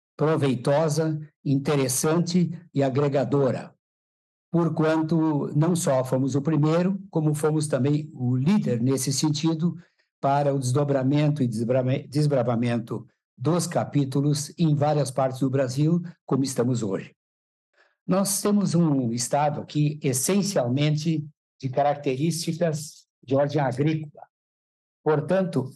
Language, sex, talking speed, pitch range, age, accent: Portuguese, male, 105 wpm, 135-170 Hz, 60-79, Brazilian